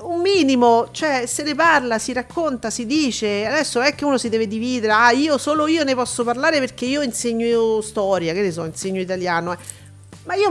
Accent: native